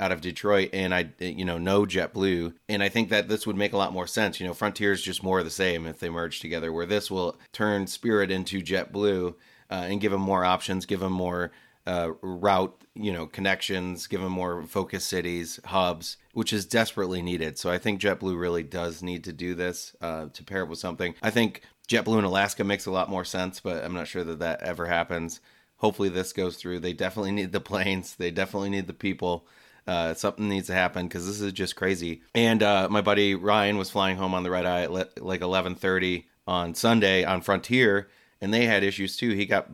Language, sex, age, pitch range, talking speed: English, male, 30-49, 90-100 Hz, 225 wpm